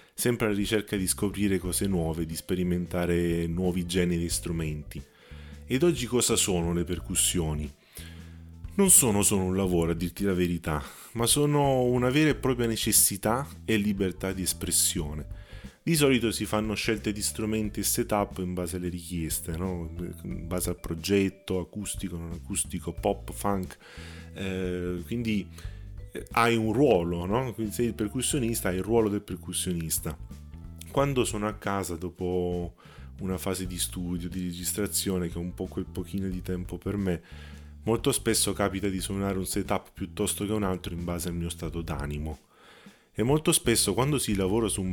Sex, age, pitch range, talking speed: male, 30-49, 85-105 Hz, 160 wpm